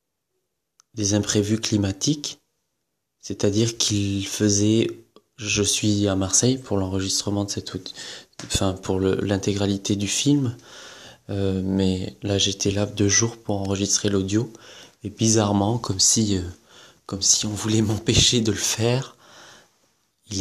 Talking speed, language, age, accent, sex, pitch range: 125 wpm, French, 20-39, French, male, 95-105 Hz